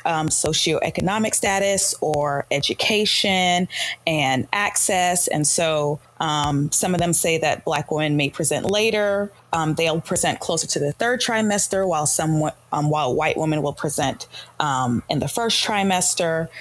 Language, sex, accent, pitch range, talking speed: English, female, American, 150-185 Hz, 150 wpm